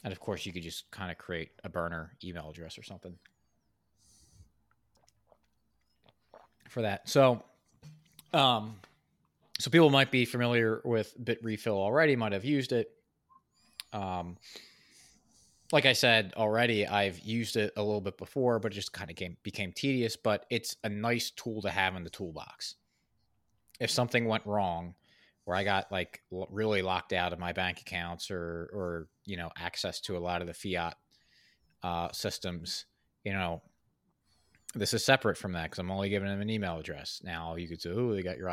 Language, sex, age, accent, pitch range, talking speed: English, male, 30-49, American, 90-110 Hz, 175 wpm